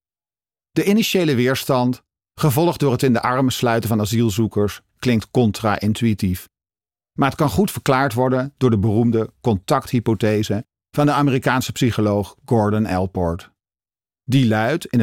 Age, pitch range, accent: 50-69, 105-130 Hz, Dutch